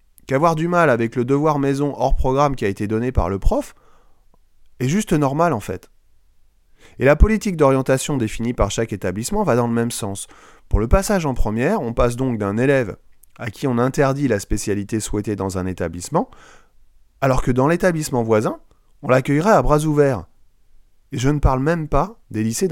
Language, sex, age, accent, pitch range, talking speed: French, male, 30-49, French, 105-145 Hz, 190 wpm